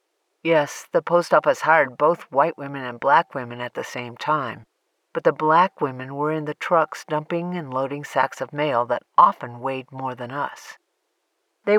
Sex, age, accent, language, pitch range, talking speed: female, 50-69, American, English, 135-185 Hz, 185 wpm